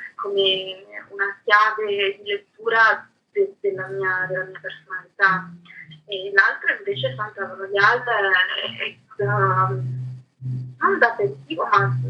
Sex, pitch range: female, 185-240 Hz